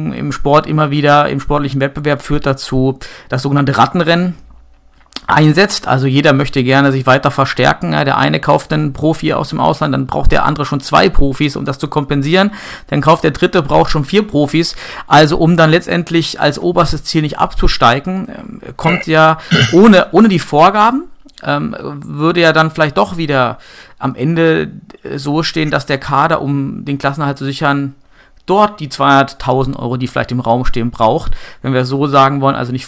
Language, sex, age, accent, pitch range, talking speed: German, male, 40-59, German, 135-165 Hz, 175 wpm